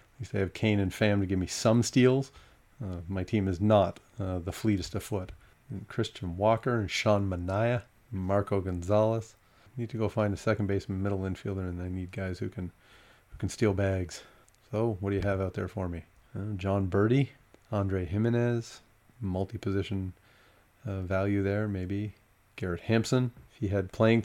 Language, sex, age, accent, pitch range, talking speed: English, male, 30-49, American, 95-115 Hz, 185 wpm